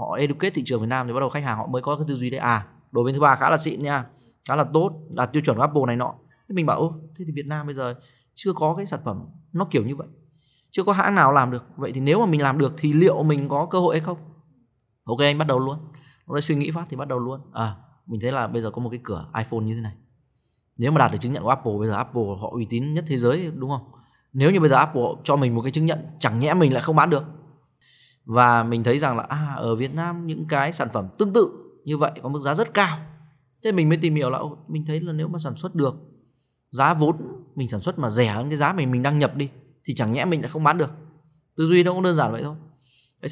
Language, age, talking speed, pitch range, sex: Vietnamese, 20-39, 285 wpm, 120-155 Hz, male